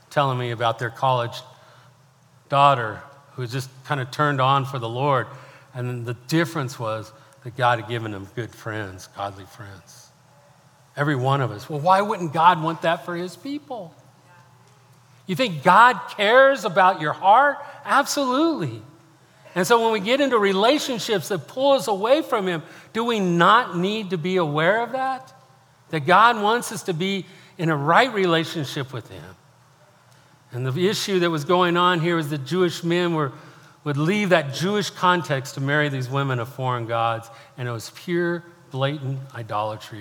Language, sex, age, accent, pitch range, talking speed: English, male, 50-69, American, 120-170 Hz, 170 wpm